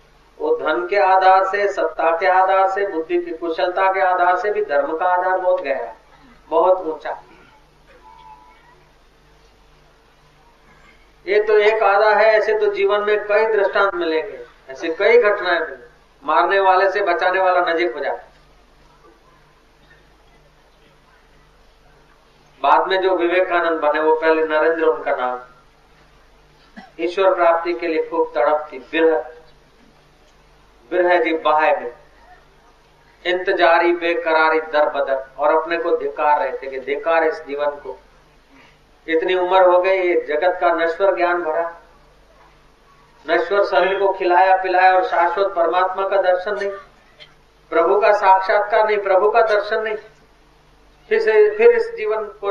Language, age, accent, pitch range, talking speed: Hindi, 40-59, native, 160-200 Hz, 135 wpm